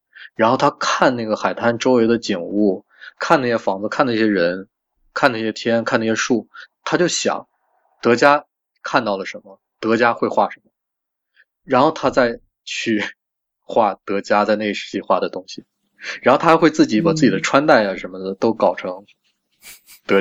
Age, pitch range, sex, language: 20-39, 105-160 Hz, male, Chinese